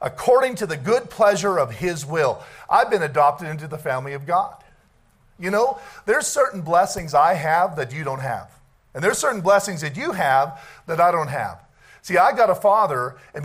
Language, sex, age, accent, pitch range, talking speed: English, male, 50-69, American, 155-200 Hz, 195 wpm